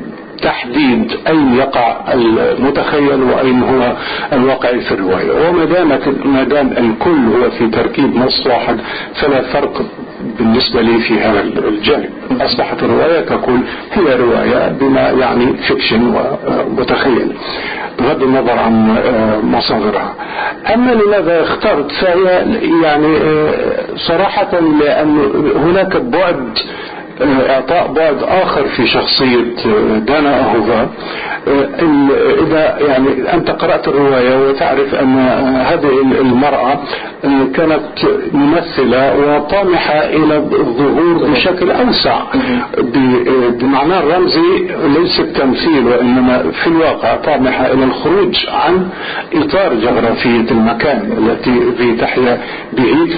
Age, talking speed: 50-69, 100 wpm